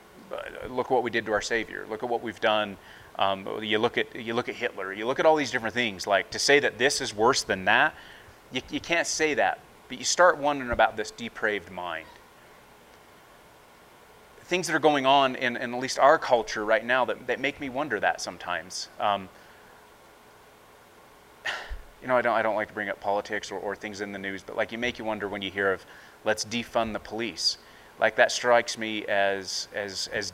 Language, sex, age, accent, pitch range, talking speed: English, male, 30-49, American, 100-135 Hz, 215 wpm